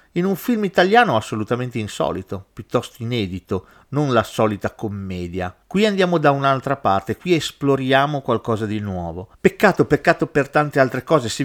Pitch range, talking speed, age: 105-145 Hz, 150 wpm, 40-59